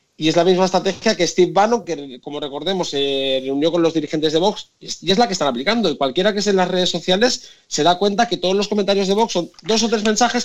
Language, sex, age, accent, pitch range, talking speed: Spanish, male, 30-49, Spanish, 170-225 Hz, 265 wpm